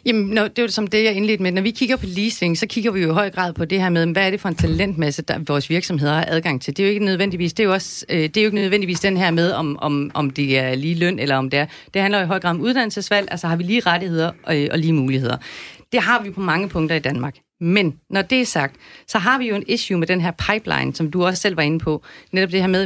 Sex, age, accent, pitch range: female, 40-59, native, 165-215 Hz